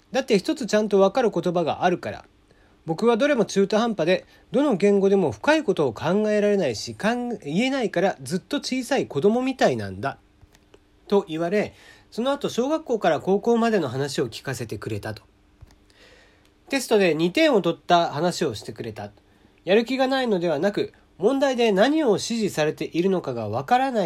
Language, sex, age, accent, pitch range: Japanese, male, 40-59, native, 155-225 Hz